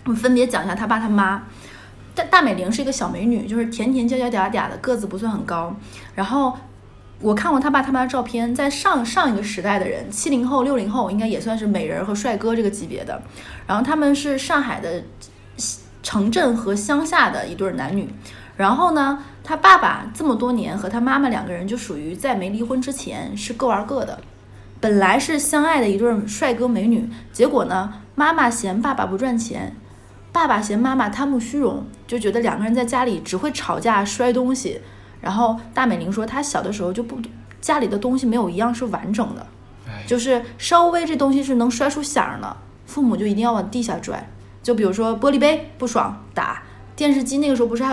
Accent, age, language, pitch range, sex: native, 20-39, Chinese, 205-265 Hz, female